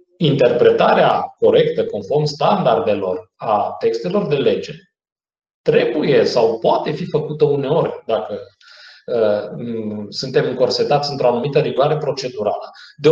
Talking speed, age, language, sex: 105 wpm, 30-49, Romanian, male